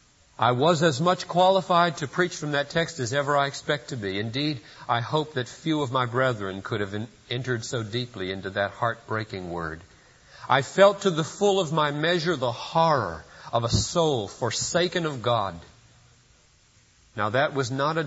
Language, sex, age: English, male, 50-69